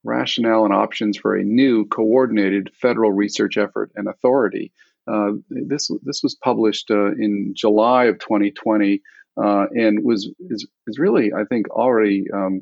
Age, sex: 50-69, male